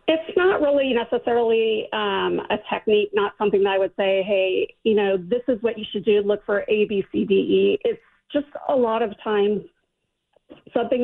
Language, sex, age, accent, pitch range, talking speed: English, female, 40-59, American, 195-220 Hz, 195 wpm